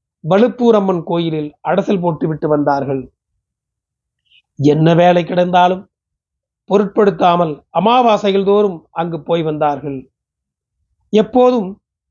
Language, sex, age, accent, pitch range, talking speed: Tamil, male, 40-59, native, 160-205 Hz, 70 wpm